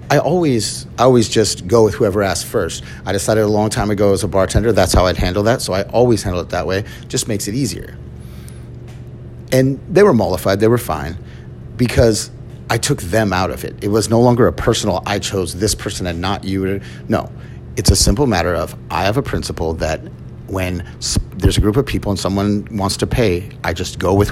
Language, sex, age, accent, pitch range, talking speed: English, male, 30-49, American, 85-115 Hz, 220 wpm